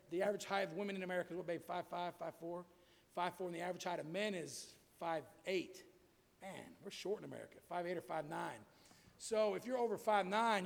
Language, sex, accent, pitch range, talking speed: English, male, American, 190-245 Hz, 220 wpm